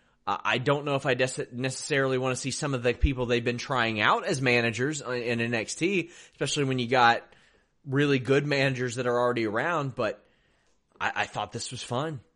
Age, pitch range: 30-49, 125-150 Hz